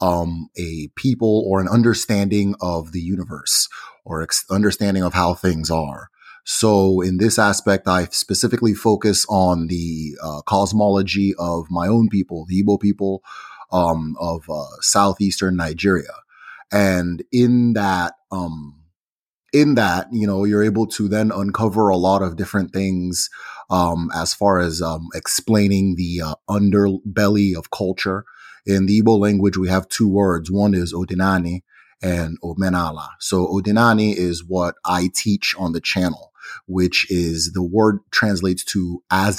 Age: 30-49